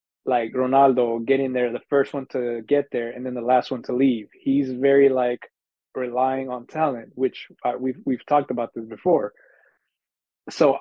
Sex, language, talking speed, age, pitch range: male, English, 180 wpm, 20-39, 125-145 Hz